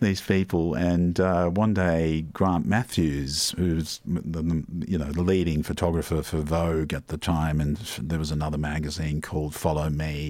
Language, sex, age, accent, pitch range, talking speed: English, male, 50-69, Australian, 75-95 Hz, 150 wpm